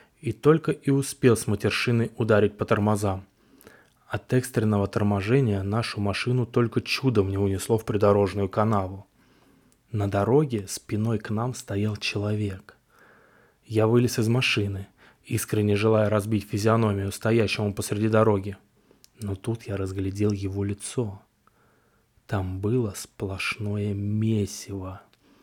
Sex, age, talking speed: male, 20-39, 115 wpm